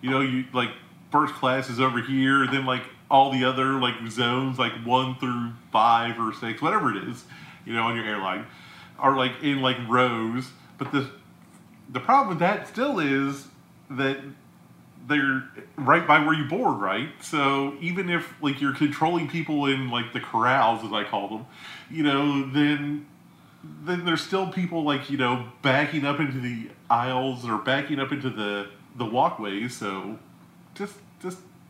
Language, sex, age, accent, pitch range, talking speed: English, male, 30-49, American, 125-160 Hz, 170 wpm